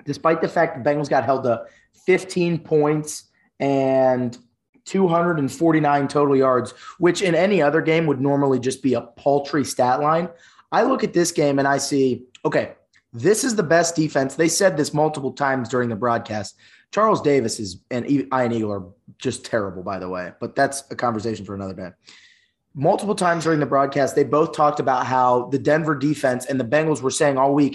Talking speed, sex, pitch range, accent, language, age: 190 wpm, male, 130-165 Hz, American, English, 20-39